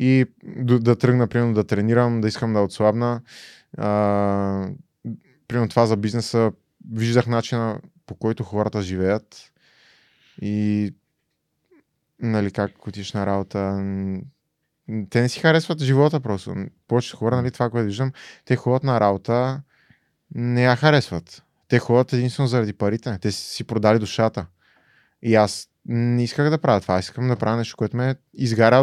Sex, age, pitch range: male, 20-39, 100-125 Hz